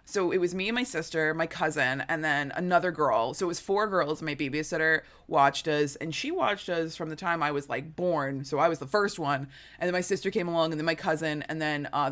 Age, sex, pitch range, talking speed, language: 20-39, female, 155-205 Hz, 255 wpm, English